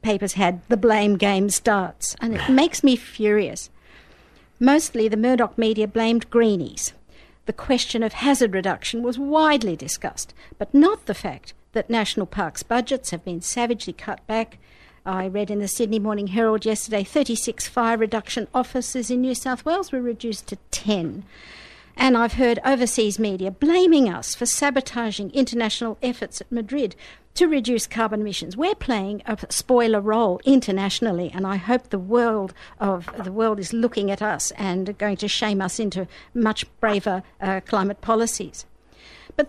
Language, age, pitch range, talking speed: English, 60-79, 205-255 Hz, 160 wpm